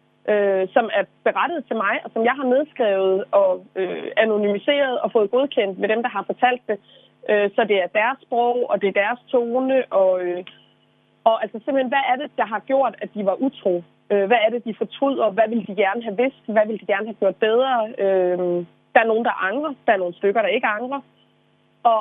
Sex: female